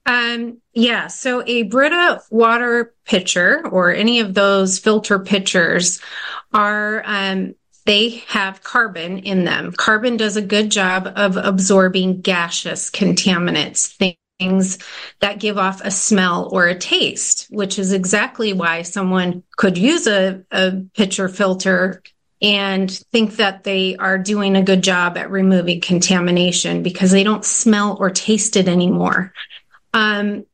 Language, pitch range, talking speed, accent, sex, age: English, 185-210 Hz, 140 wpm, American, female, 30-49